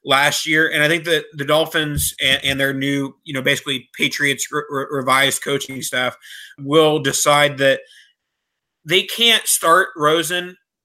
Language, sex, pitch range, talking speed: English, male, 135-155 Hz, 145 wpm